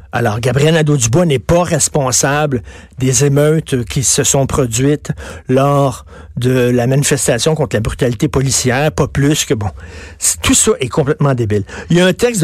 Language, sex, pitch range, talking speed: French, male, 110-155 Hz, 170 wpm